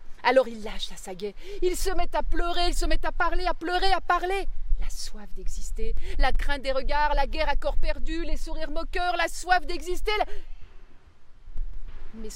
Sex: female